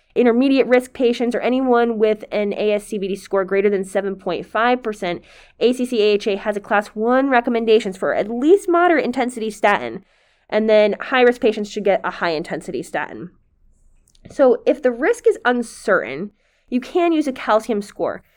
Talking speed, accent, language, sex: 150 wpm, American, English, female